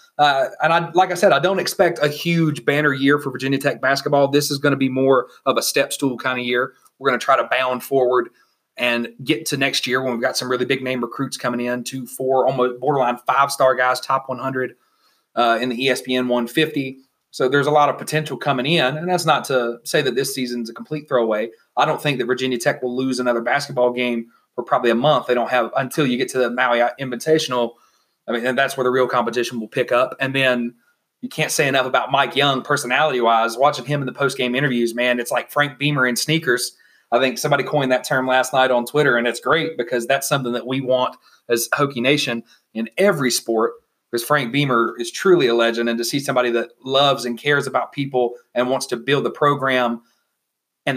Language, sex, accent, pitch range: English, male, American, 120-145 Hz